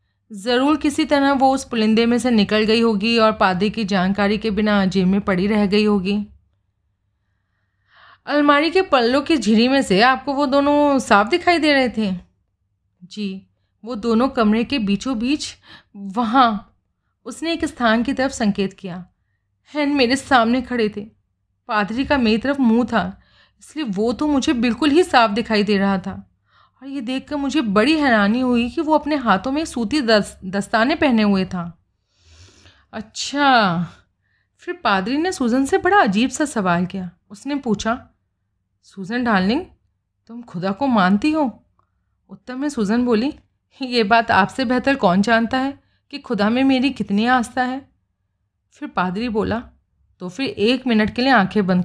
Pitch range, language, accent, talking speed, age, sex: 190-260 Hz, Hindi, native, 165 wpm, 30-49, female